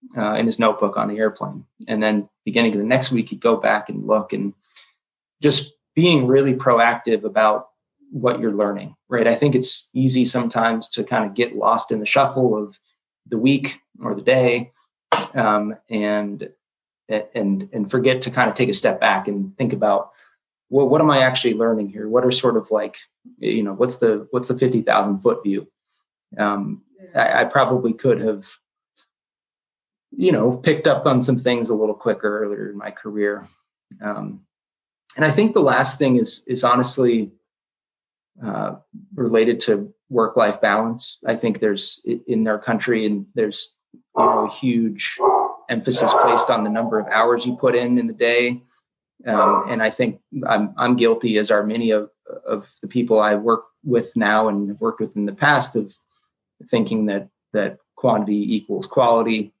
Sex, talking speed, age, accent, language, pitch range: male, 175 wpm, 30-49, American, English, 105-125 Hz